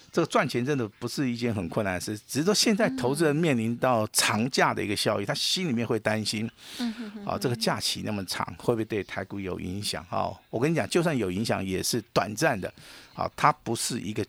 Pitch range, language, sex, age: 100-125 Hz, Chinese, male, 50-69